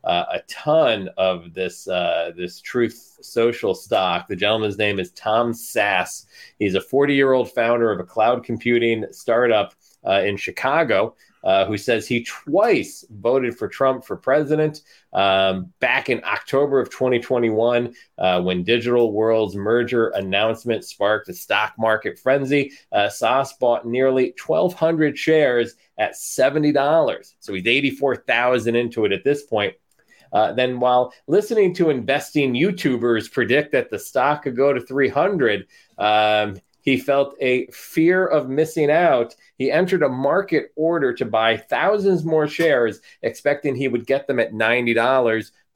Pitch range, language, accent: 115-150 Hz, English, American